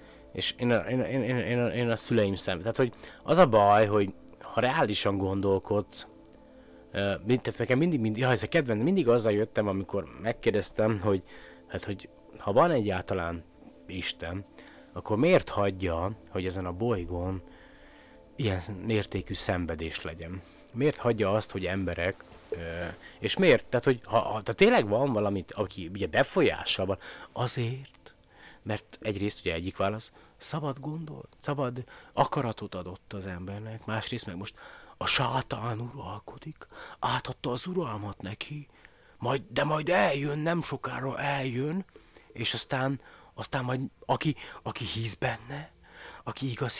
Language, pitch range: Hungarian, 95-130 Hz